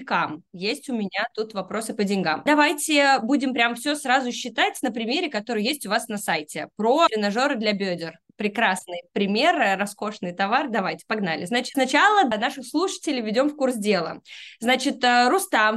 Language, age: Russian, 20-39